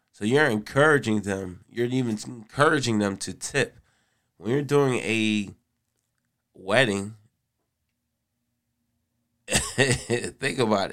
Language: English